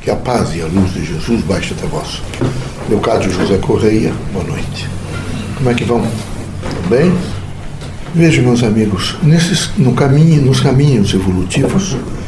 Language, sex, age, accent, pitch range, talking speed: Portuguese, male, 60-79, Brazilian, 110-155 Hz, 155 wpm